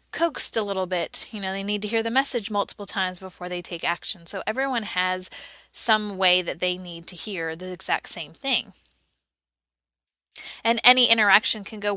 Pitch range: 185-230 Hz